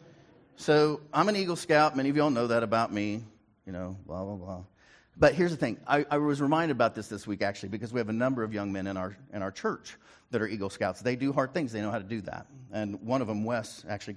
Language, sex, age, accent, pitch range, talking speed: English, male, 40-59, American, 105-140 Hz, 270 wpm